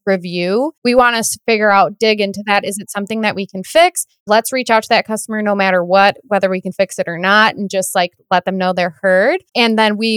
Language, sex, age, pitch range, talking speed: English, female, 20-39, 195-240 Hz, 260 wpm